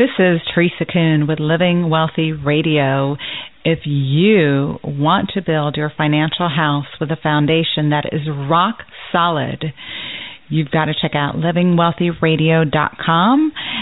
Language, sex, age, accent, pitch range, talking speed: English, female, 40-59, American, 155-195 Hz, 125 wpm